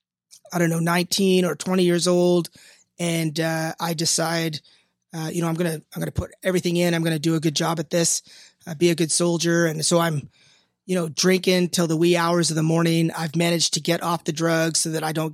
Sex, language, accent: male, English, American